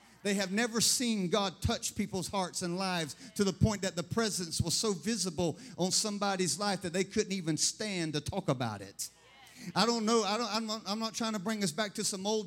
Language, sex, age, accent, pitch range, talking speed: English, male, 50-69, American, 195-235 Hz, 230 wpm